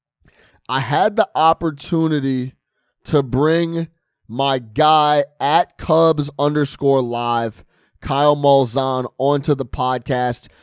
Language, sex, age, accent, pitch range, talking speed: English, male, 20-39, American, 130-155 Hz, 95 wpm